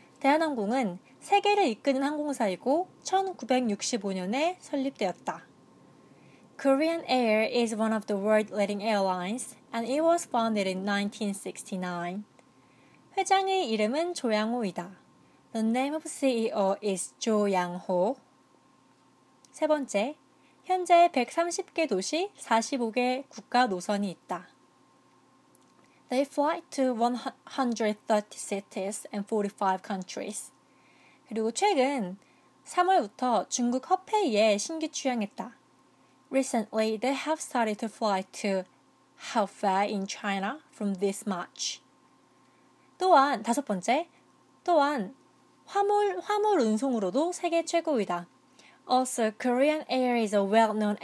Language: Korean